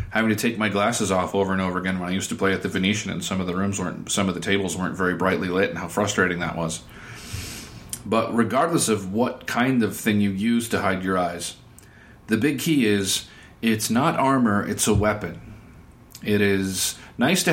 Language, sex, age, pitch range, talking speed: English, male, 40-59, 95-120 Hz, 220 wpm